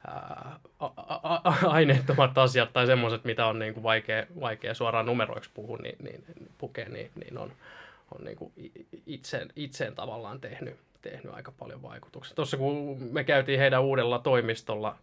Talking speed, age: 120 wpm, 20-39